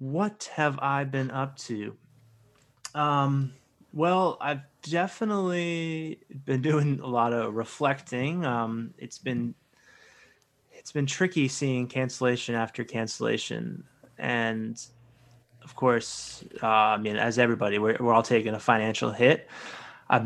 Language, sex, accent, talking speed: English, male, American, 125 wpm